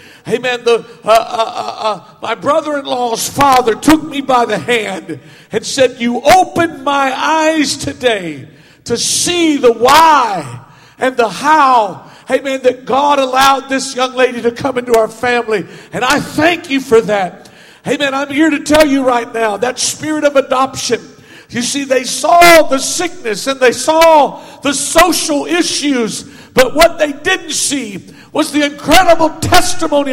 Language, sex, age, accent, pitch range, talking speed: English, male, 50-69, American, 180-295 Hz, 160 wpm